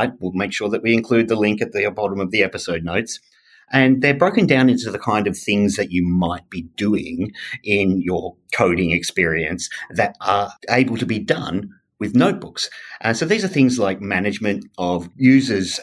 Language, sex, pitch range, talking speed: English, male, 90-120 Hz, 195 wpm